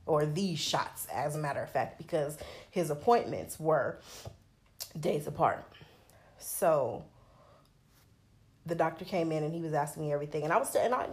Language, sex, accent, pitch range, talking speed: English, female, American, 150-185 Hz, 165 wpm